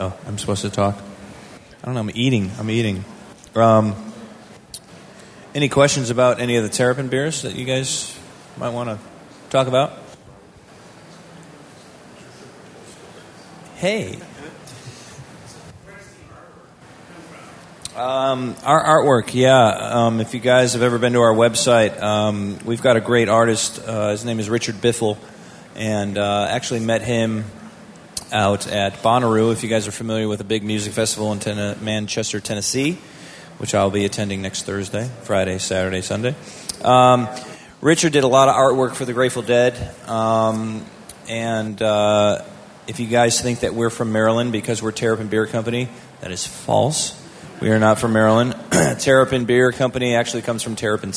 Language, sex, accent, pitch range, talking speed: English, male, American, 105-125 Hz, 150 wpm